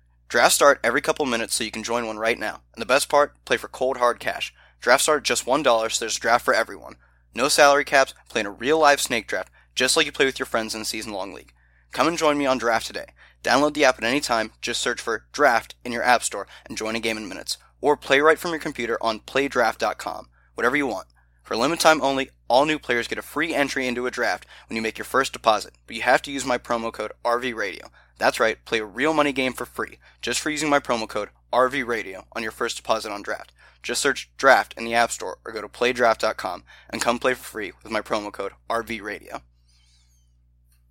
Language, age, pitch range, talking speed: English, 20-39, 95-135 Hz, 240 wpm